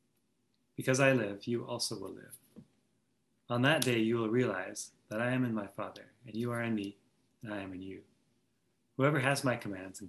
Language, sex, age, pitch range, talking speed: English, male, 30-49, 105-125 Hz, 200 wpm